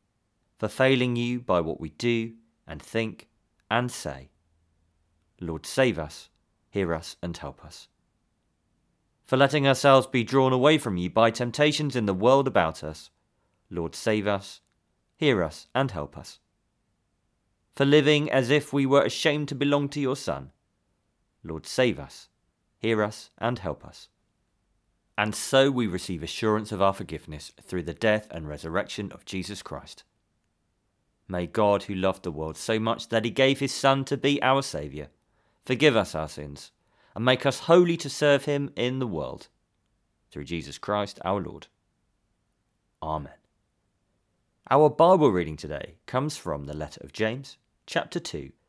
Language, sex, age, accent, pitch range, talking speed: English, male, 30-49, British, 85-130 Hz, 155 wpm